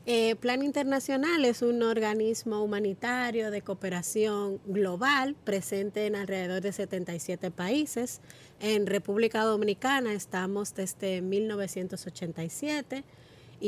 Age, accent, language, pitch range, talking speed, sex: 30-49, American, Spanish, 190-235 Hz, 95 wpm, female